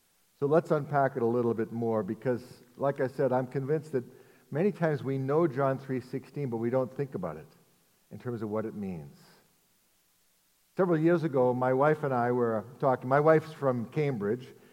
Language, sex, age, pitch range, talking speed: English, male, 60-79, 125-155 Hz, 185 wpm